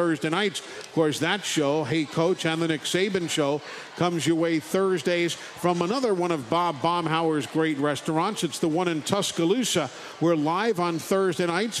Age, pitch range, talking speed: 50-69, 160-200 Hz, 180 wpm